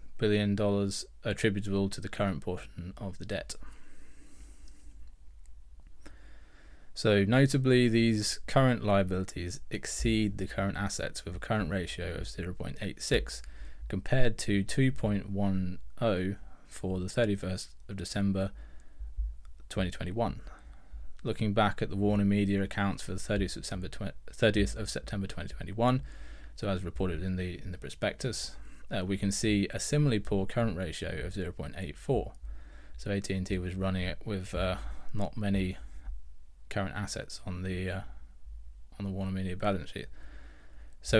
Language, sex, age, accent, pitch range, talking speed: English, male, 20-39, British, 70-105 Hz, 130 wpm